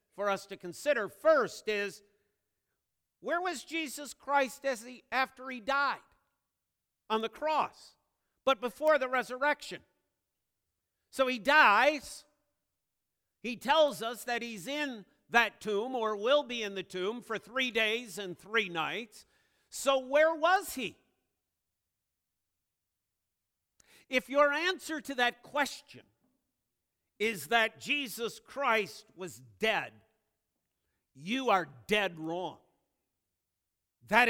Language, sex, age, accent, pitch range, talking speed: English, male, 50-69, American, 180-265 Hz, 110 wpm